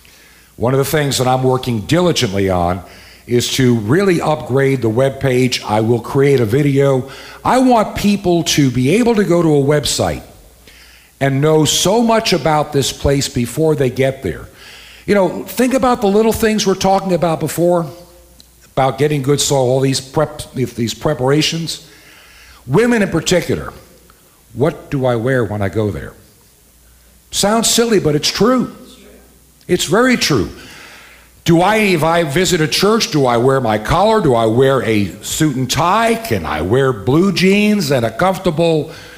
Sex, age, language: male, 60-79, English